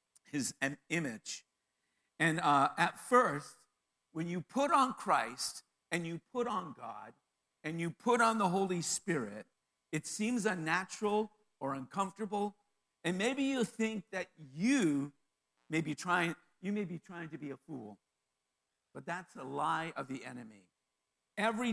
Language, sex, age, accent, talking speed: English, male, 50-69, American, 145 wpm